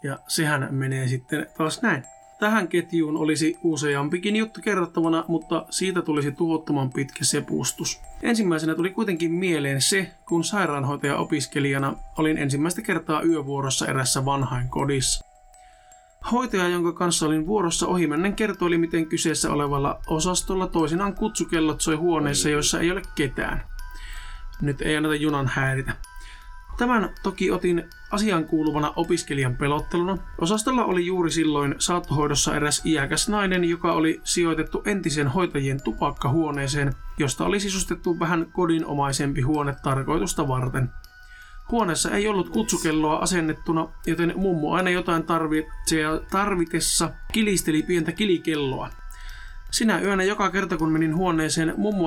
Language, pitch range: Finnish, 145-180 Hz